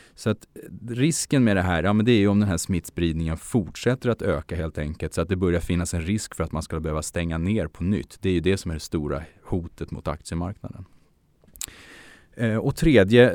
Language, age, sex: Swedish, 30-49, male